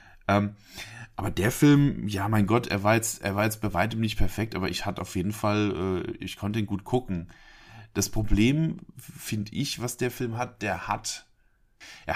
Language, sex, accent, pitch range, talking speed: German, male, German, 90-115 Hz, 190 wpm